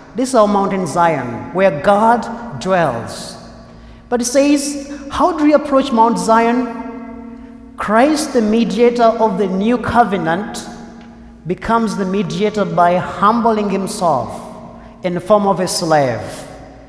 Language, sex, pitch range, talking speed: English, male, 165-235 Hz, 130 wpm